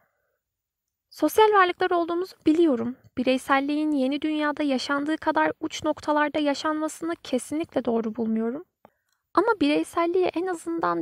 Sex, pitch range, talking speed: female, 245-315 Hz, 105 wpm